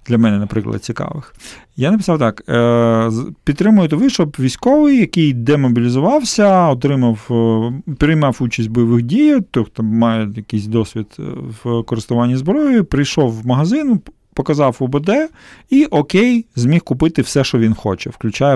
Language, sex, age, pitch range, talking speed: Ukrainian, male, 40-59, 115-150 Hz, 130 wpm